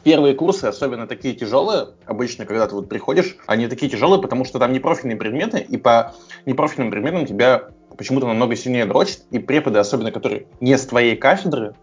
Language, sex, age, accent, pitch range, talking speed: Russian, male, 20-39, native, 105-135 Hz, 180 wpm